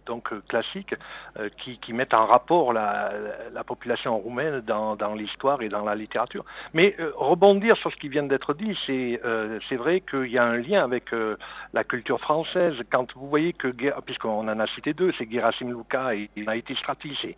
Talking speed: 195 wpm